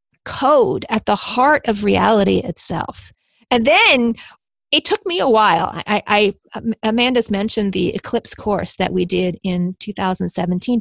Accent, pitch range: American, 195-250 Hz